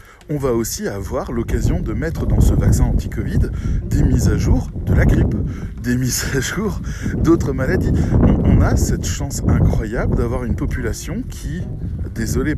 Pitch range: 95-125 Hz